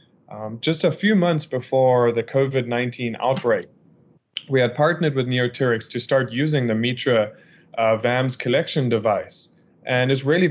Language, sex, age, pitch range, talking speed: English, male, 20-39, 120-150 Hz, 150 wpm